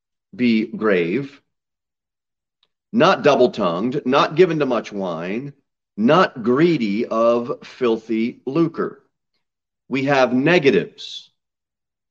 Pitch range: 120-150 Hz